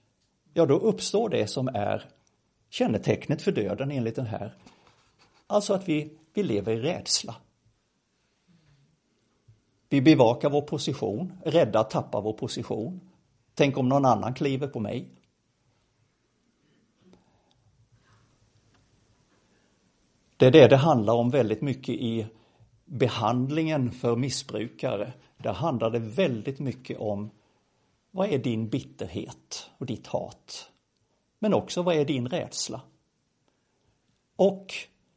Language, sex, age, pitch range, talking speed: Swedish, male, 60-79, 115-150 Hz, 115 wpm